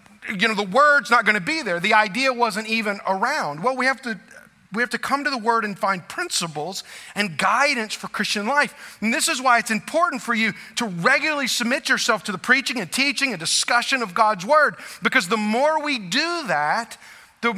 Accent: American